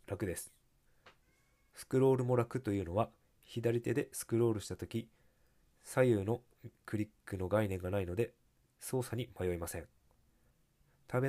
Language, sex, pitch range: Japanese, male, 95-120 Hz